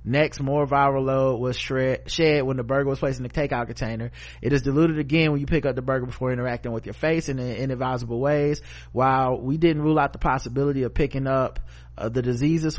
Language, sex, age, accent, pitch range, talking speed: English, male, 20-39, American, 120-150 Hz, 225 wpm